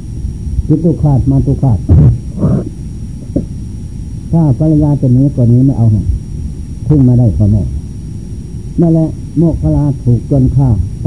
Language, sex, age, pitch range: Thai, male, 60-79, 115-145 Hz